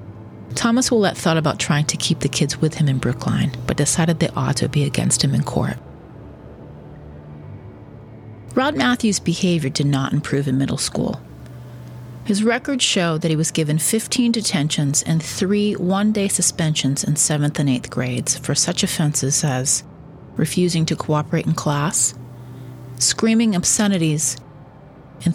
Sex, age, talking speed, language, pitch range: female, 40-59, 150 wpm, English, 130-175 Hz